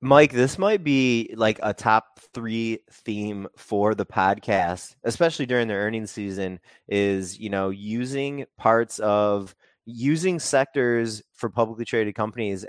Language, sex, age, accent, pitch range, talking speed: English, male, 20-39, American, 100-120 Hz, 135 wpm